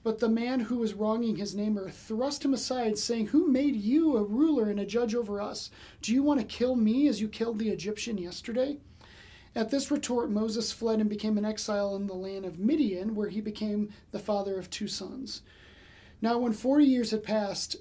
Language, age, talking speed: English, 40-59, 210 wpm